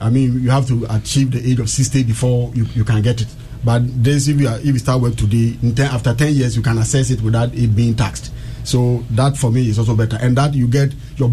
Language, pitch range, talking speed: English, 115-130 Hz, 270 wpm